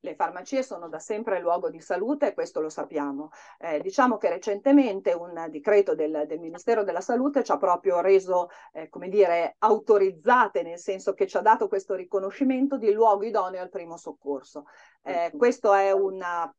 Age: 40-59